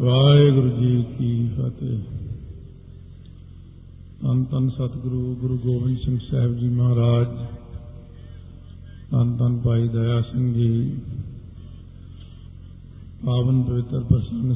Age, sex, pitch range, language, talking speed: 50-69, male, 105-125 Hz, Punjabi, 80 wpm